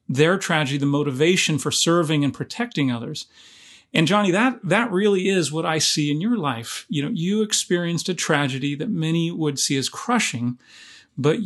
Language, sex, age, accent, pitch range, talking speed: English, male, 40-59, American, 145-175 Hz, 180 wpm